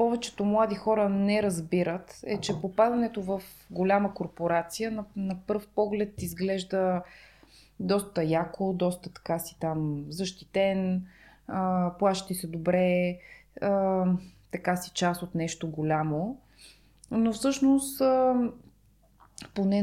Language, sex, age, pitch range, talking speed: Bulgarian, female, 20-39, 175-215 Hz, 105 wpm